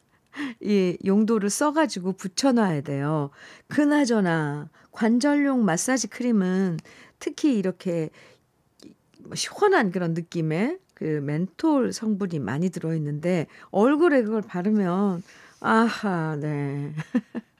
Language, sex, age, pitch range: Korean, female, 50-69, 155-220 Hz